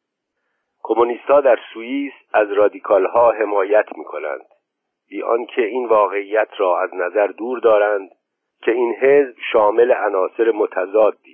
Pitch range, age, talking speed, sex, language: 280-455 Hz, 50-69, 130 wpm, male, Persian